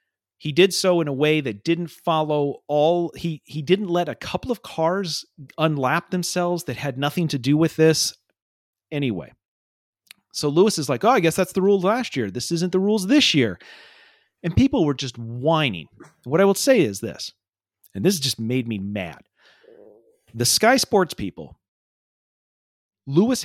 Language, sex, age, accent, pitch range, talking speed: English, male, 40-59, American, 130-185 Hz, 175 wpm